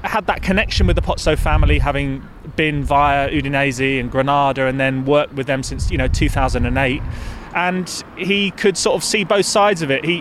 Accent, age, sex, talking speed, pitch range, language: British, 20-39, male, 195 wpm, 135-180 Hz, English